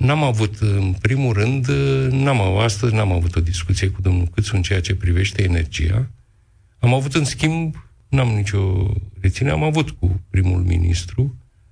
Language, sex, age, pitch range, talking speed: Romanian, male, 50-69, 95-125 Hz, 165 wpm